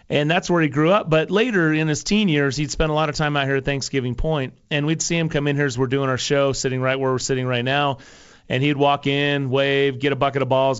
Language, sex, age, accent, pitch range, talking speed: English, male, 30-49, American, 130-155 Hz, 290 wpm